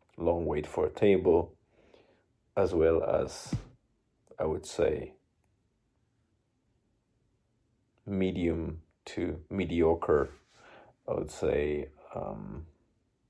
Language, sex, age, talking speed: English, male, 40-59, 80 wpm